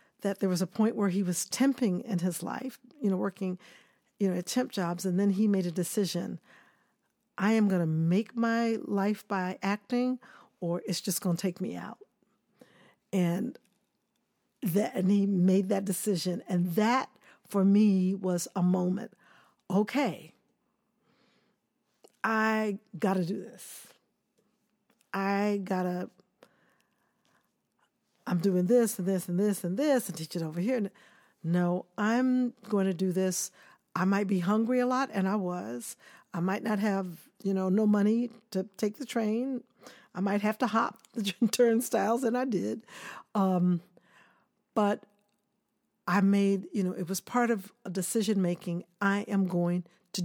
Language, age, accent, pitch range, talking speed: English, 50-69, American, 185-220 Hz, 160 wpm